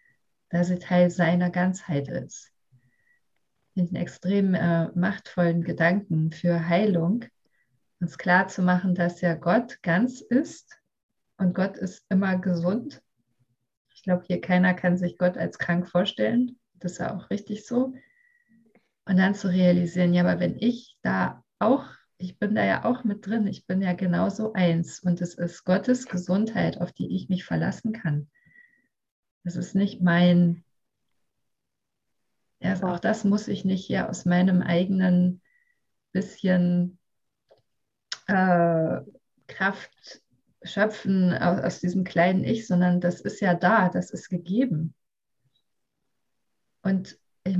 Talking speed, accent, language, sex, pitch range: 135 wpm, German, German, female, 170-200 Hz